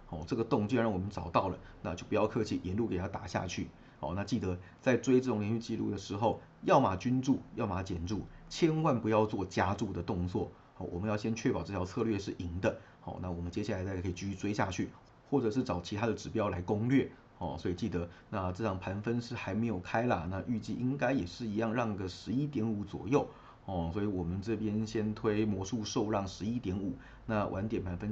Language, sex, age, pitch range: Chinese, male, 30-49, 95-115 Hz